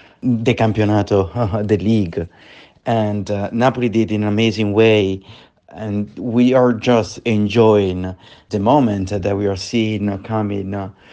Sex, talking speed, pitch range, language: male, 135 wpm, 105-130 Hz, English